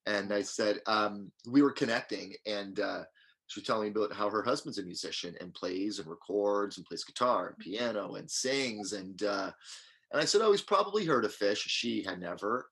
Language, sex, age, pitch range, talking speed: English, male, 30-49, 100-130 Hz, 210 wpm